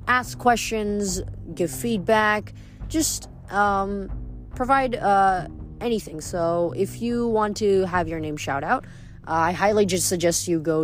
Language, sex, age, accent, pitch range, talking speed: English, female, 20-39, American, 145-190 Hz, 145 wpm